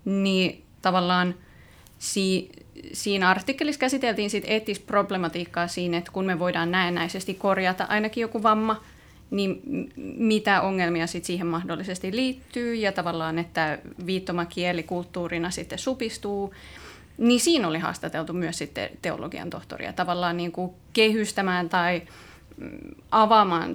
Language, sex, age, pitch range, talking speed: Finnish, female, 20-39, 175-210 Hz, 120 wpm